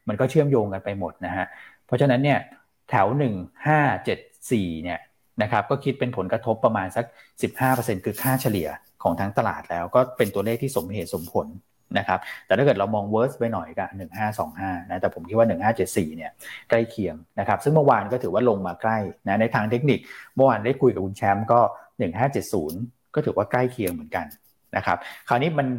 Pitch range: 100-125 Hz